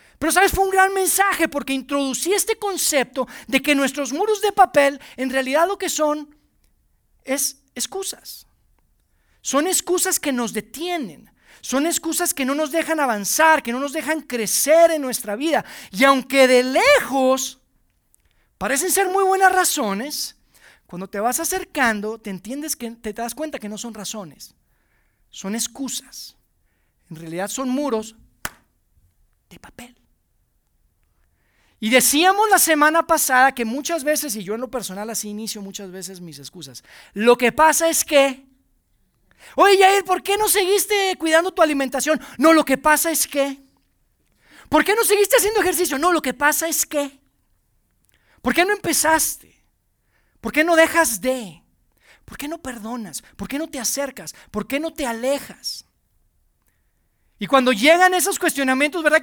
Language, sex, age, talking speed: Spanish, male, 40-59, 155 wpm